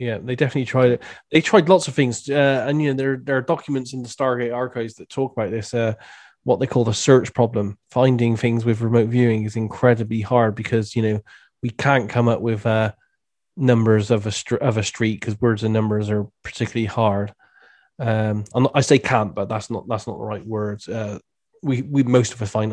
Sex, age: male, 20-39